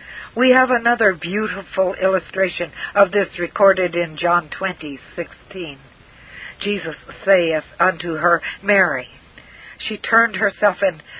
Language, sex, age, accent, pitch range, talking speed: English, female, 60-79, American, 175-220 Hz, 115 wpm